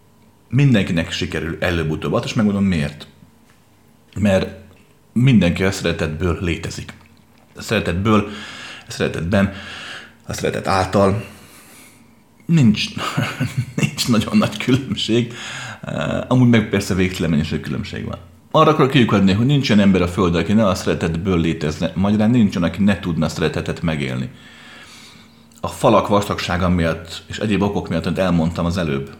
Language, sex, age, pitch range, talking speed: Hungarian, male, 30-49, 85-110 Hz, 130 wpm